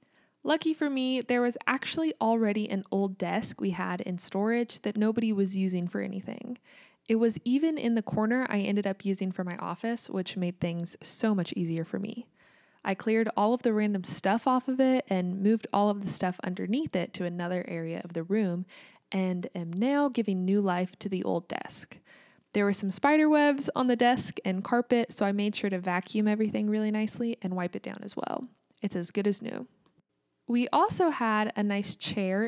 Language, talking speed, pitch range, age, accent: English, 205 wpm, 180-235 Hz, 20-39, American